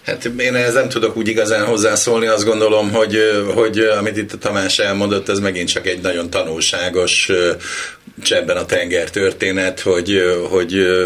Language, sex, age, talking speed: Hungarian, male, 60-79, 155 wpm